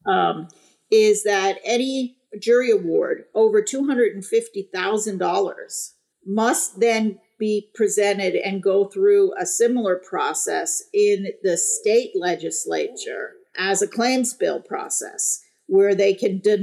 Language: English